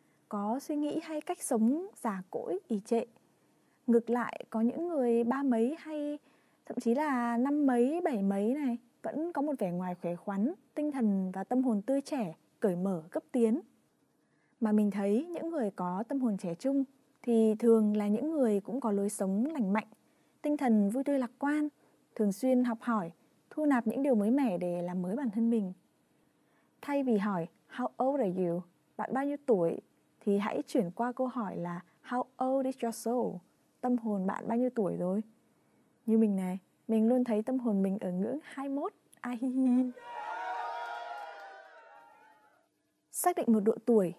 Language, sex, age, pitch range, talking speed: Vietnamese, female, 20-39, 200-275 Hz, 180 wpm